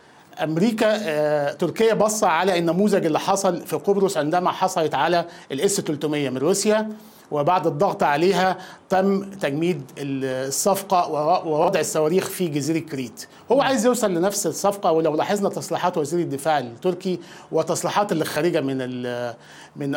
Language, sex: Arabic, male